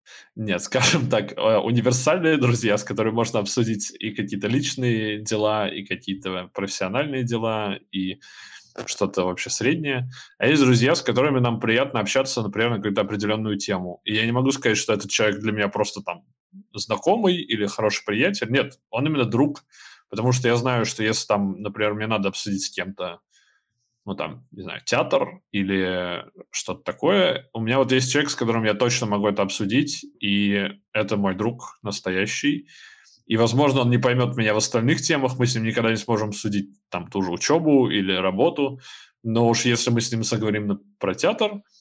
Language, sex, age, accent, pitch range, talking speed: Russian, male, 20-39, native, 105-130 Hz, 180 wpm